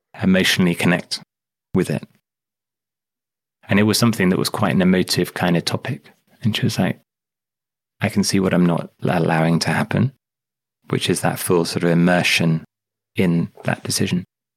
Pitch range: 90-115 Hz